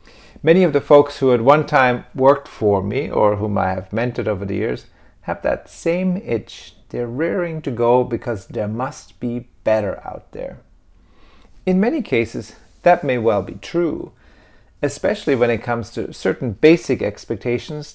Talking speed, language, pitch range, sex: 165 wpm, English, 105-145 Hz, male